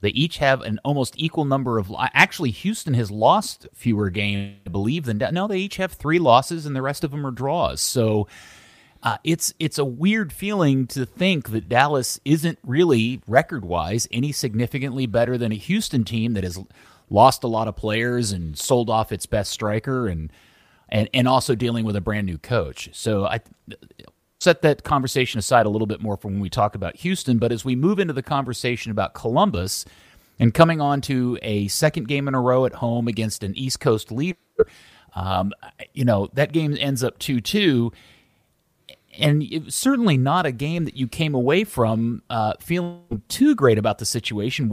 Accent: American